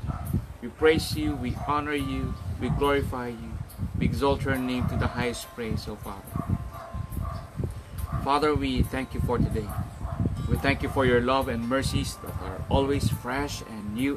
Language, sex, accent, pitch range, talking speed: English, male, Filipino, 105-130 Hz, 165 wpm